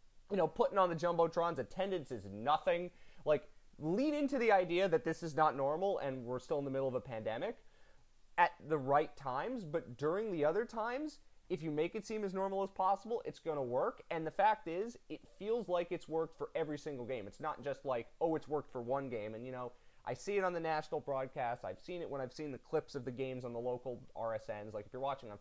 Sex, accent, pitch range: male, American, 130-180 Hz